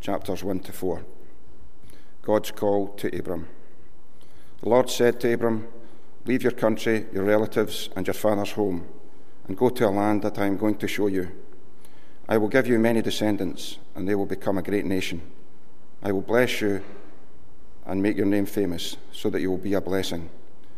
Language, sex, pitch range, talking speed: English, male, 95-110 Hz, 180 wpm